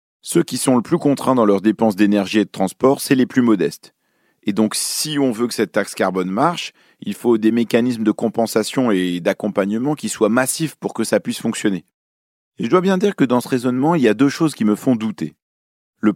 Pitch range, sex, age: 100-135 Hz, male, 30-49